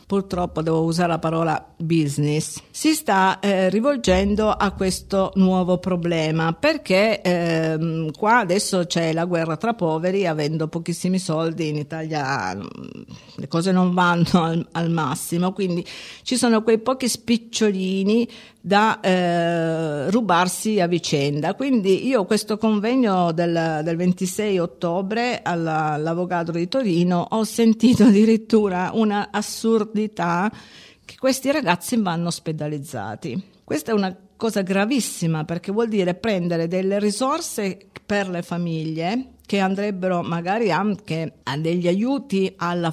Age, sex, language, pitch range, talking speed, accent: 50-69, female, Italian, 165-215 Hz, 125 wpm, native